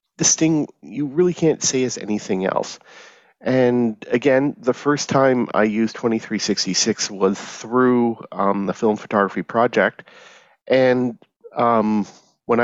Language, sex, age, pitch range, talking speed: English, male, 40-59, 105-145 Hz, 130 wpm